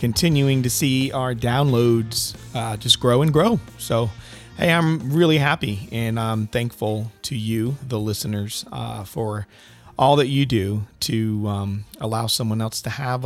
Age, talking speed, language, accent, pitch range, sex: 40-59, 160 wpm, English, American, 105-135 Hz, male